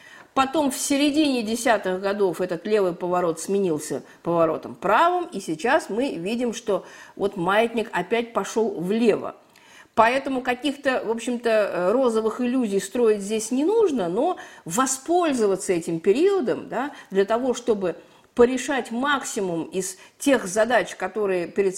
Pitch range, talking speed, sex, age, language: 190-260 Hz, 125 wpm, female, 50-69, Russian